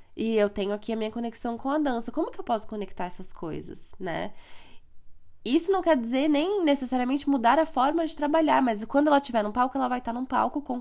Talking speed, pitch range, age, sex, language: 230 wpm, 195-245 Hz, 10-29, female, Portuguese